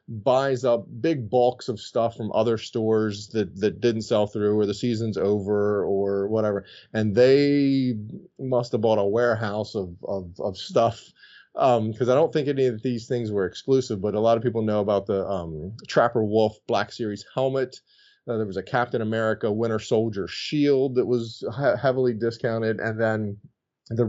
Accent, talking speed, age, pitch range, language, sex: American, 180 wpm, 30-49, 105-125 Hz, English, male